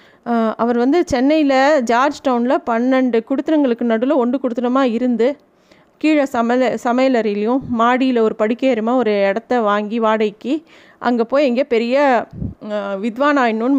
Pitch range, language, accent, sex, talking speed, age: 235-285 Hz, Tamil, native, female, 115 wpm, 20-39